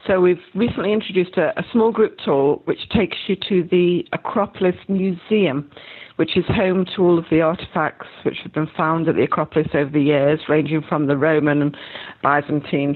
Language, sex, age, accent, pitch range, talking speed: English, female, 50-69, British, 155-190 Hz, 185 wpm